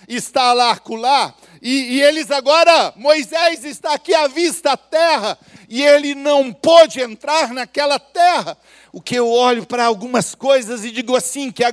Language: Portuguese